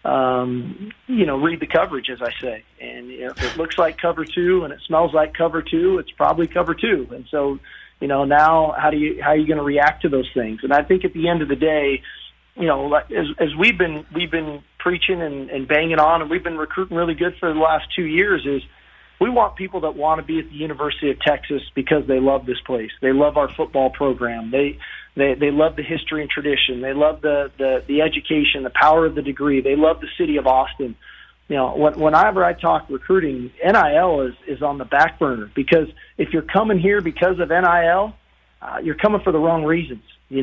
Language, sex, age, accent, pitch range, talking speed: English, male, 40-59, American, 140-175 Hz, 230 wpm